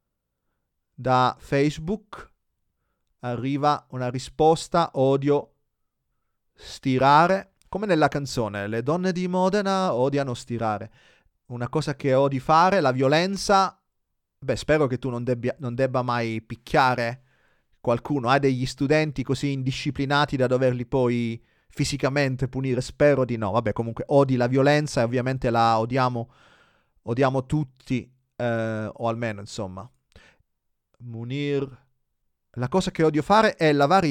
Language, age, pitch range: Italian, 30-49, 120-155 Hz